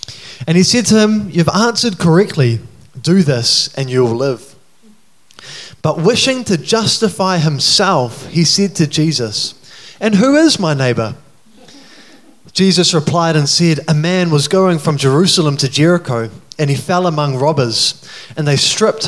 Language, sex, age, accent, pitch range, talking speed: English, male, 20-39, Australian, 135-180 Hz, 150 wpm